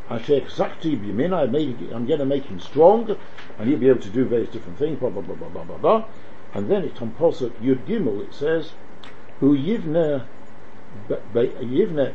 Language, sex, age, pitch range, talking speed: English, male, 60-79, 130-195 Hz, 190 wpm